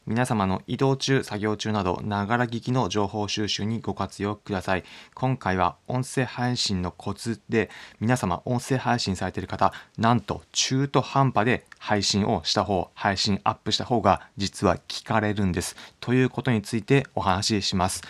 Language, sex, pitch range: Japanese, male, 95-120 Hz